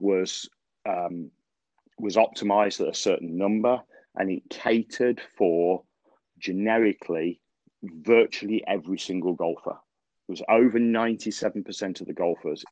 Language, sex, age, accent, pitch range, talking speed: English, male, 40-59, British, 90-105 Hz, 115 wpm